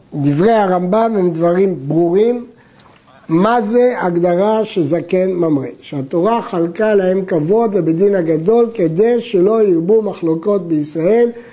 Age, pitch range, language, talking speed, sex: 60-79, 180-225 Hz, Hebrew, 110 wpm, male